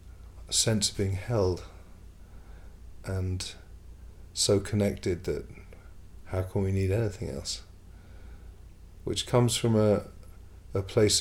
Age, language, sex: 40-59, English, male